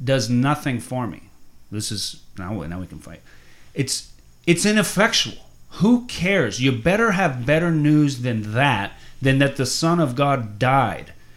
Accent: American